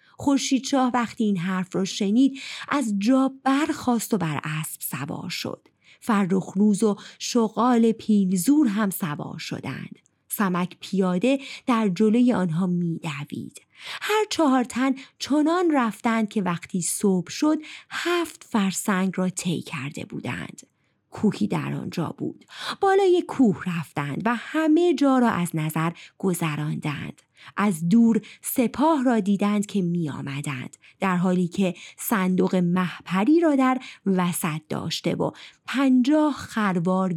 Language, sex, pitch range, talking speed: Persian, female, 180-250 Hz, 125 wpm